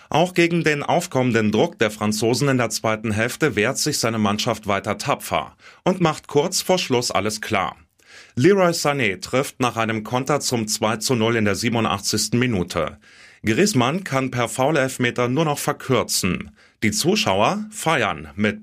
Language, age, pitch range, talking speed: German, 30-49, 105-140 Hz, 160 wpm